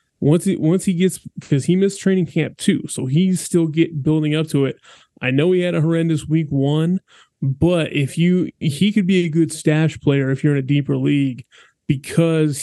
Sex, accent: male, American